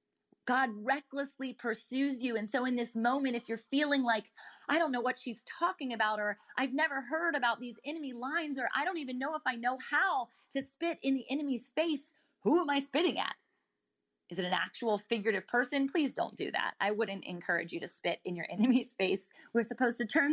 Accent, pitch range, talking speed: American, 200-255 Hz, 215 wpm